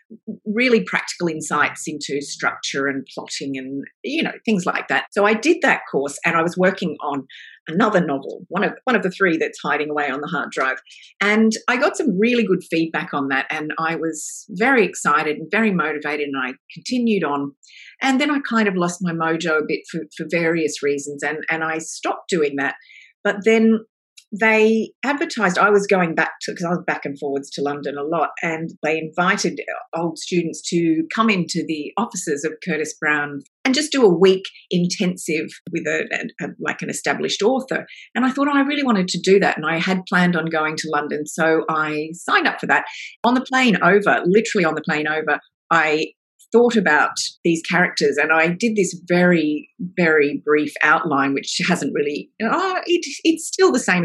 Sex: female